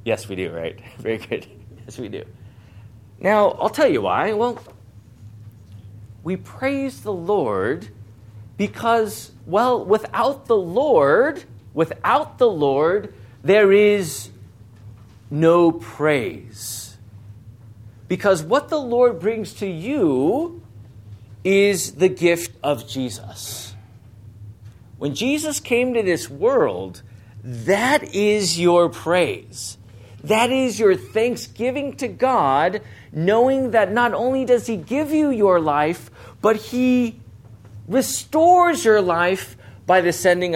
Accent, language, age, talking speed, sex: American, English, 40-59, 115 wpm, male